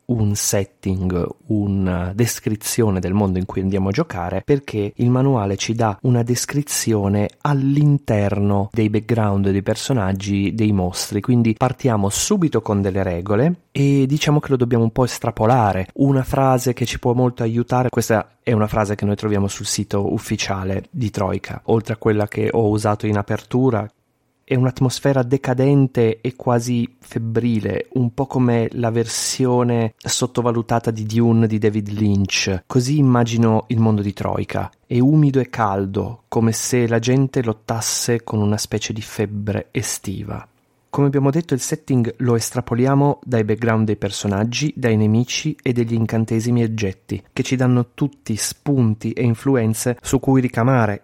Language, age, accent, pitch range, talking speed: Italian, 30-49, native, 105-125 Hz, 155 wpm